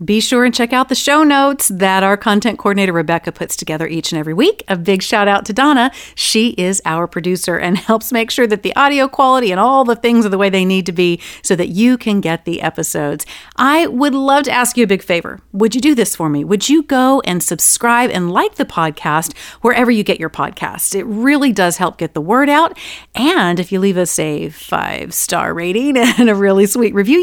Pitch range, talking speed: 175-245 Hz, 230 wpm